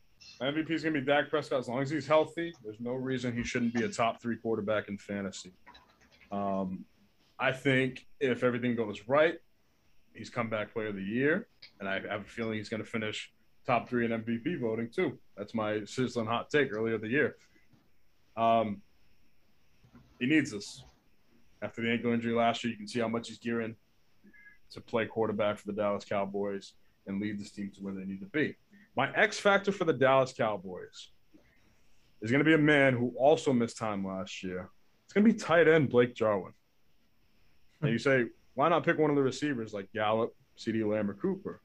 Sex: male